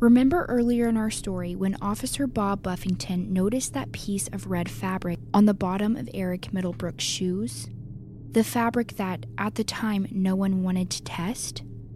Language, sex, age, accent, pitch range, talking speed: English, female, 10-29, American, 175-225 Hz, 165 wpm